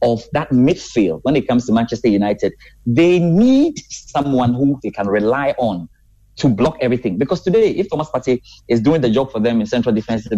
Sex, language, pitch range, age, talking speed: male, English, 115-150 Hz, 30-49, 195 wpm